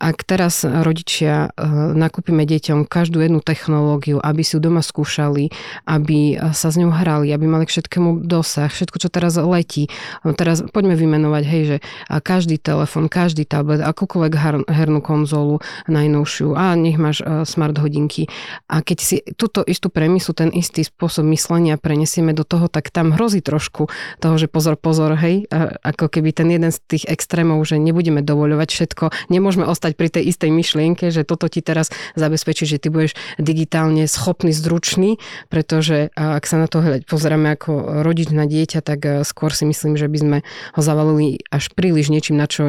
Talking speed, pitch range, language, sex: 170 wpm, 155-170 Hz, Slovak, female